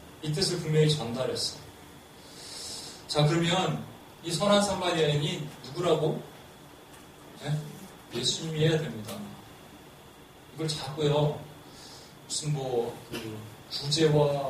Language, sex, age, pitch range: Korean, male, 30-49, 135-160 Hz